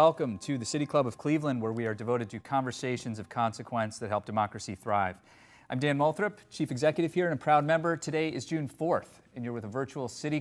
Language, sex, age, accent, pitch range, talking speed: English, male, 30-49, American, 105-130 Hz, 225 wpm